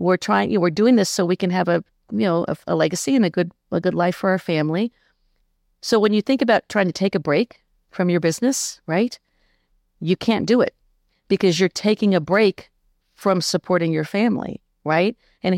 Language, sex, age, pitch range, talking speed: English, female, 50-69, 160-210 Hz, 210 wpm